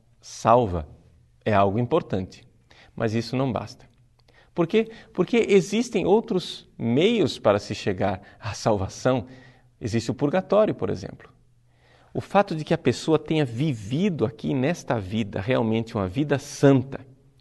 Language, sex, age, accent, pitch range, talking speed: Portuguese, male, 50-69, Brazilian, 115-145 Hz, 135 wpm